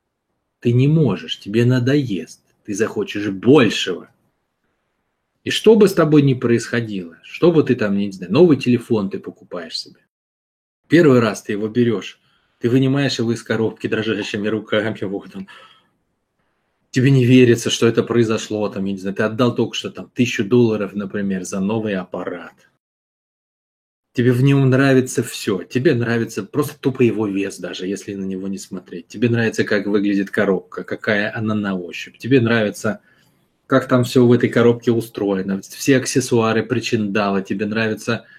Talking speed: 160 wpm